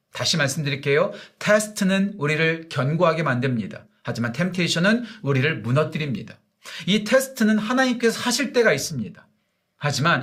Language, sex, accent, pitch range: Korean, male, native, 140-200 Hz